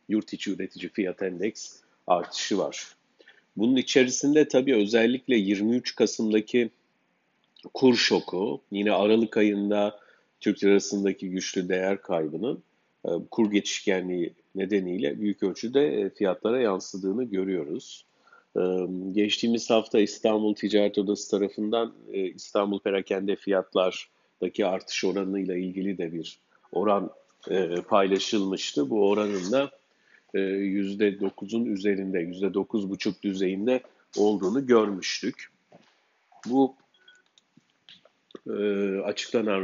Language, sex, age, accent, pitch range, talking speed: Turkish, male, 50-69, native, 95-115 Hz, 85 wpm